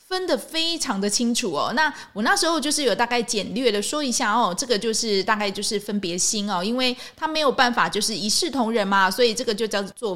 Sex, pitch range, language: female, 205-300 Hz, Chinese